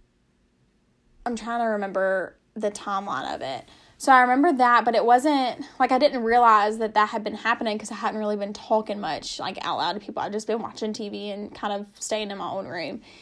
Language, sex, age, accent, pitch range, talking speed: English, female, 10-29, American, 215-255 Hz, 220 wpm